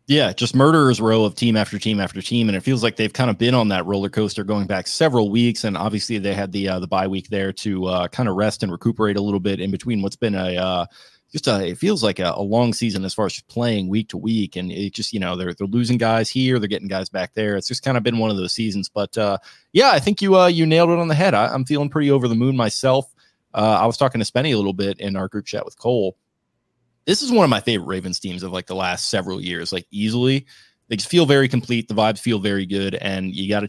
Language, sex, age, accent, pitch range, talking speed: English, male, 20-39, American, 100-125 Hz, 285 wpm